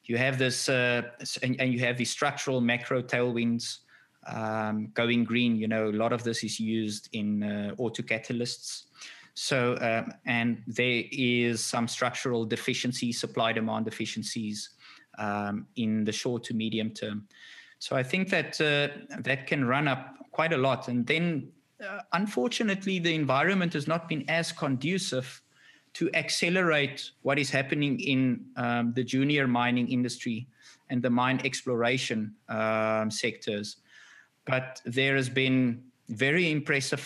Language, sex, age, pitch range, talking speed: English, male, 20-39, 115-135 Hz, 145 wpm